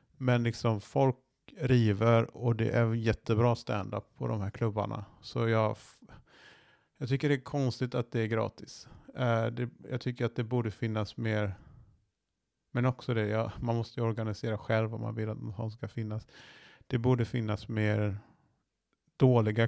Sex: male